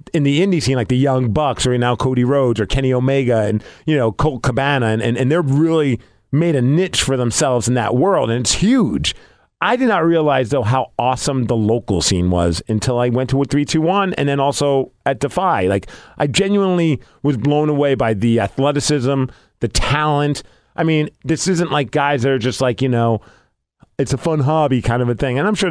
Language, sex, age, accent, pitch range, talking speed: English, male, 40-59, American, 120-160 Hz, 210 wpm